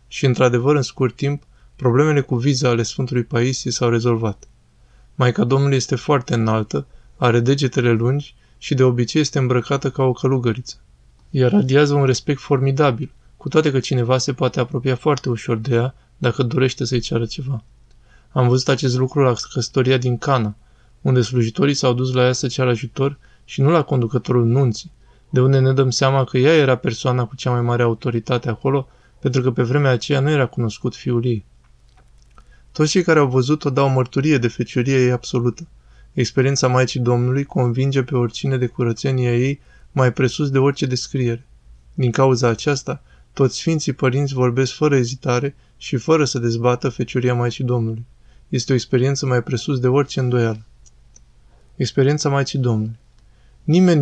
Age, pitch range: 20-39, 120-135 Hz